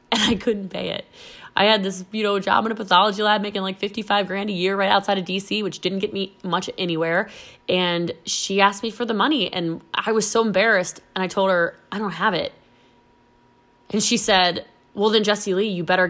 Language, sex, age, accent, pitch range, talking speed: English, female, 20-39, American, 175-220 Hz, 225 wpm